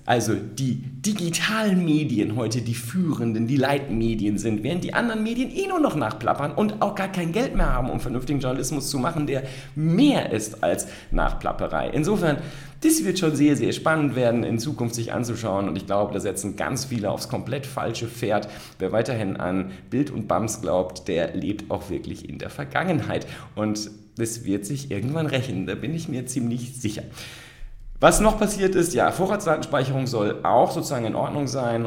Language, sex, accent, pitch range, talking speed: German, male, German, 110-160 Hz, 180 wpm